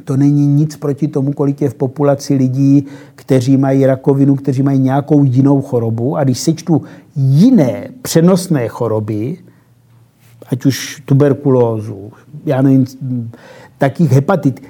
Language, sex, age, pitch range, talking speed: Czech, male, 50-69, 135-175 Hz, 120 wpm